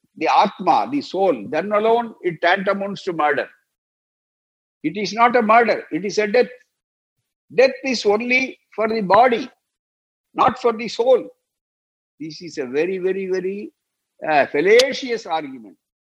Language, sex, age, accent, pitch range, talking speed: Tamil, male, 60-79, native, 195-285 Hz, 140 wpm